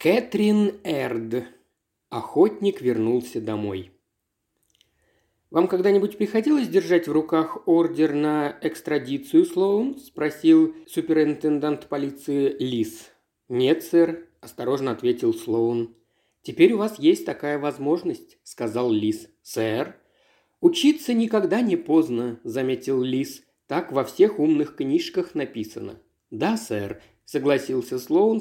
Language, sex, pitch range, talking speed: Russian, male, 130-215 Hz, 105 wpm